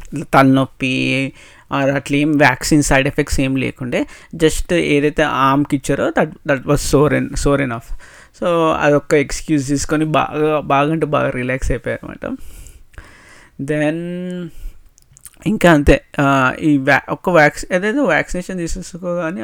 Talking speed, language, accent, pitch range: 115 wpm, Telugu, native, 140-160 Hz